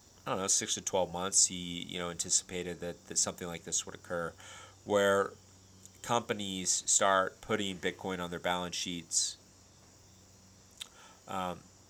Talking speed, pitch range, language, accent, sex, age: 140 wpm, 85-95 Hz, English, American, male, 30-49